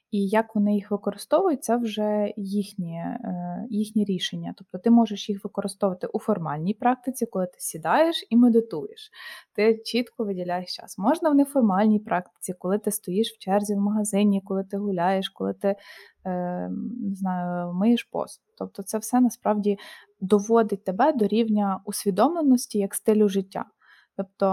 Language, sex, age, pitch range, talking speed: Ukrainian, female, 20-39, 195-225 Hz, 150 wpm